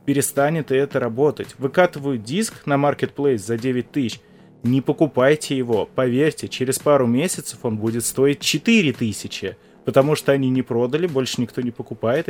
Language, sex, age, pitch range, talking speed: Russian, male, 20-39, 125-165 Hz, 150 wpm